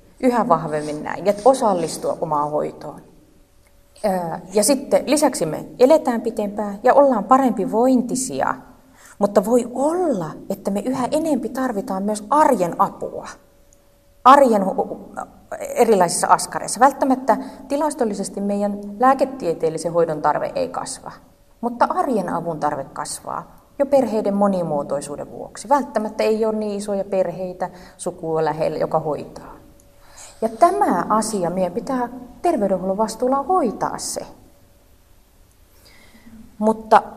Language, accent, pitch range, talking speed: Finnish, native, 165-260 Hz, 110 wpm